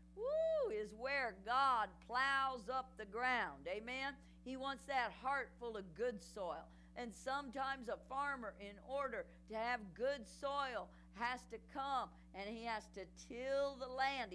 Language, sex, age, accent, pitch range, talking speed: English, female, 50-69, American, 225-275 Hz, 155 wpm